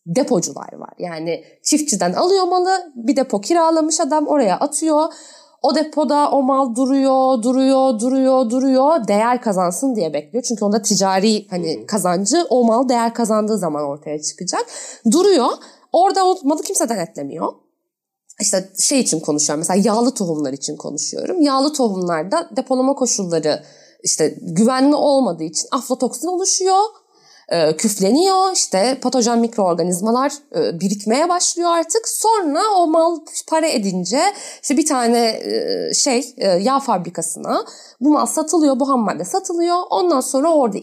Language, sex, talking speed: Turkish, female, 130 wpm